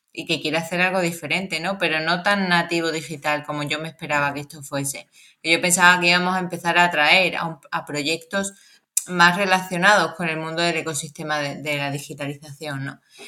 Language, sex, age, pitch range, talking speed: Spanish, female, 20-39, 165-195 Hz, 195 wpm